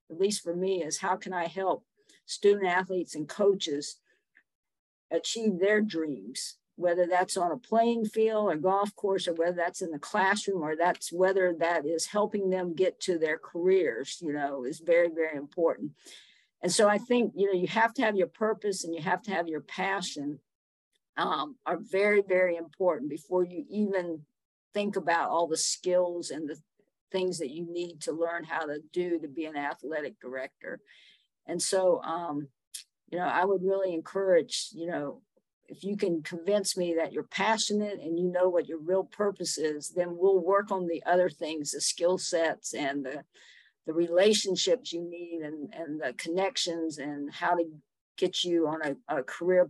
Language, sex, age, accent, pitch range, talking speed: English, female, 50-69, American, 160-195 Hz, 185 wpm